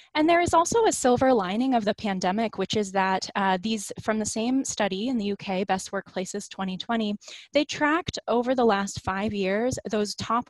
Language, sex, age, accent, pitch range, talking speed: English, female, 20-39, American, 190-240 Hz, 195 wpm